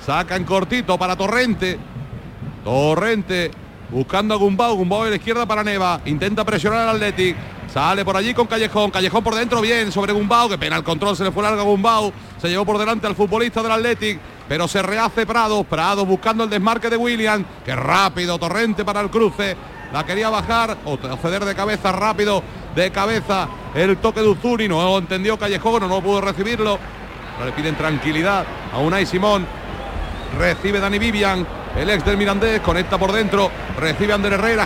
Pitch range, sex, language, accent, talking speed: 185-225 Hz, male, Spanish, Spanish, 180 wpm